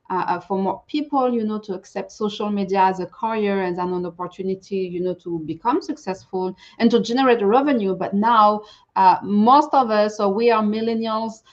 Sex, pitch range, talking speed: female, 195-250 Hz, 180 wpm